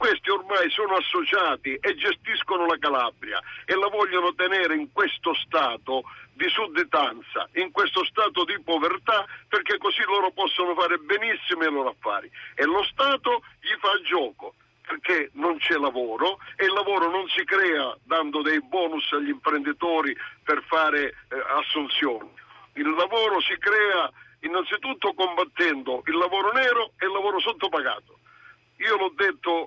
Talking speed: 145 wpm